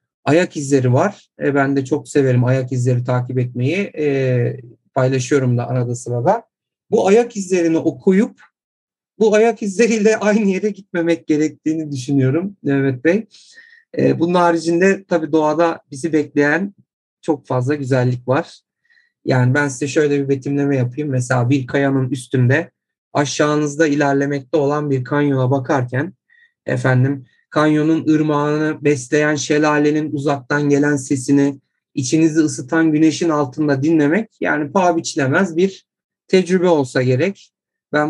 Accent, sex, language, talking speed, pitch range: native, male, Turkish, 125 wpm, 140-175 Hz